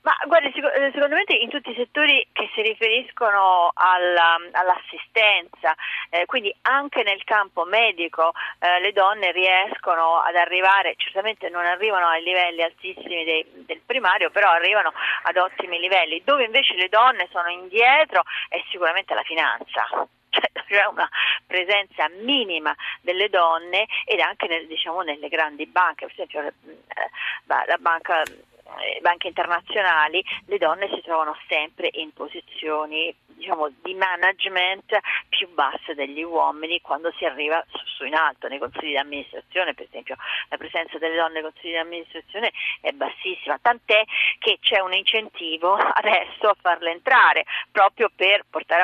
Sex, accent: female, native